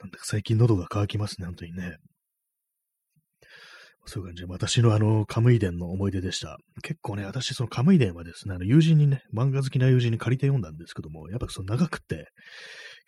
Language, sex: Japanese, male